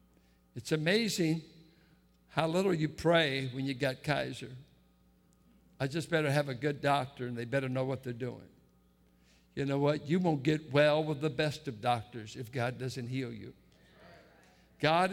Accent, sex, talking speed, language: American, male, 165 wpm, English